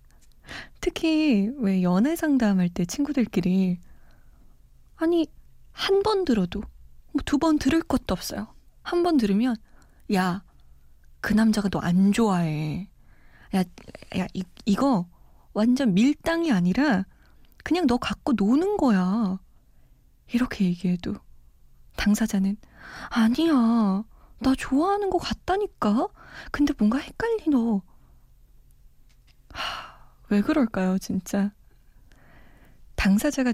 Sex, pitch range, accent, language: female, 185-260 Hz, native, Korean